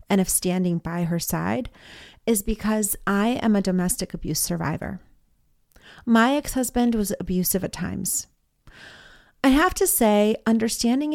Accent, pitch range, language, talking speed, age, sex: American, 185-260 Hz, English, 135 wpm, 30-49, female